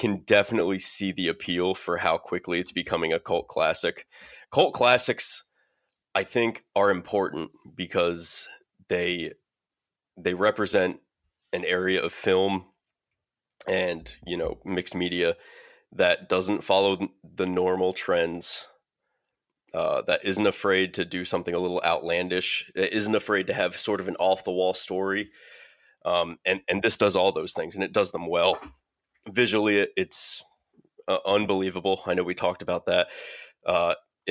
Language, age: English, 20-39